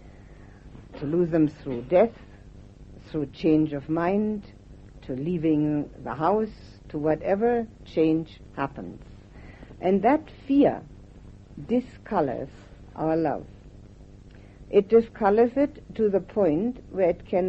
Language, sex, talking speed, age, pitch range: English, female, 110 wpm, 60-79, 145-205 Hz